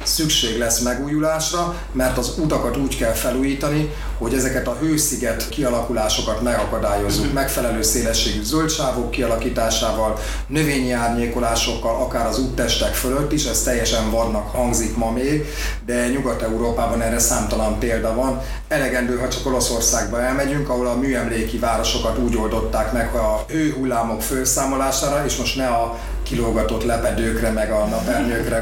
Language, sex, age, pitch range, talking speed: Hungarian, male, 30-49, 115-130 Hz, 130 wpm